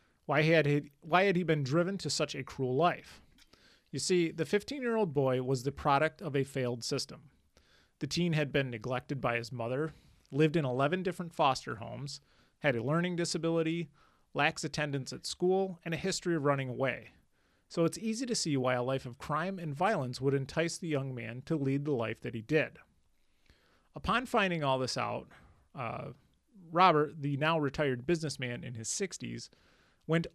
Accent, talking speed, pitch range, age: American, 180 wpm, 135-165 Hz, 30-49